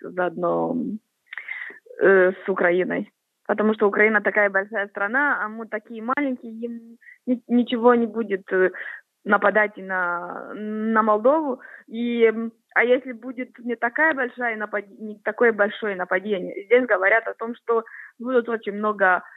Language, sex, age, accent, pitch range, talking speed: Ukrainian, female, 20-39, native, 205-255 Hz, 125 wpm